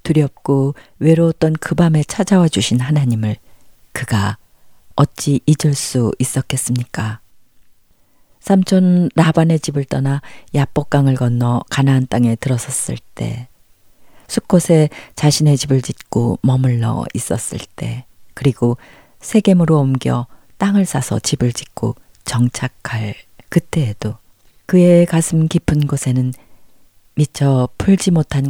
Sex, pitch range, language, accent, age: female, 115-155 Hz, Korean, native, 40-59